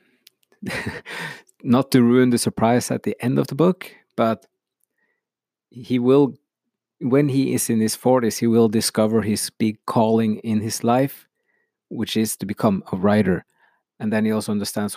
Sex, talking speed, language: male, 160 wpm, English